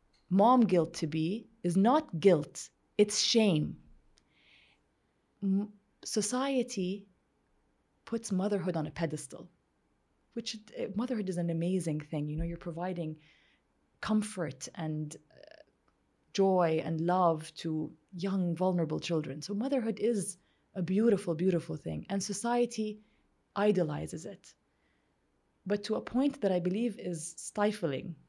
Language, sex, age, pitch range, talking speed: English, female, 20-39, 175-230 Hz, 115 wpm